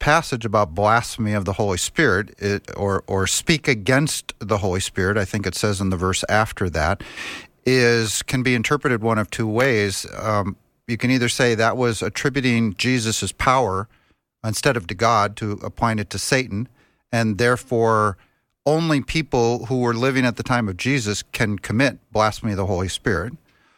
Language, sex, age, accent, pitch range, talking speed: English, male, 50-69, American, 105-130 Hz, 175 wpm